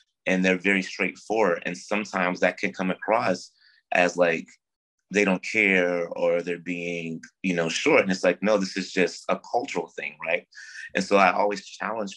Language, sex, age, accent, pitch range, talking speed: English, male, 30-49, American, 80-95 Hz, 180 wpm